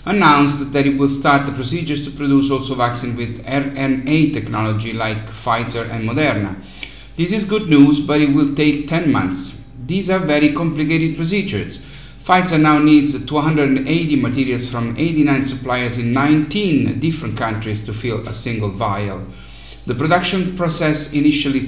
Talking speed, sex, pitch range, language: 150 wpm, male, 120-150 Hz, English